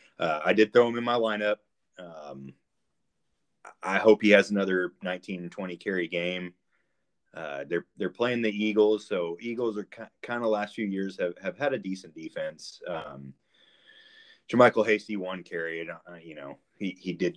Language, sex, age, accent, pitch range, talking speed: English, male, 30-49, American, 90-110 Hz, 175 wpm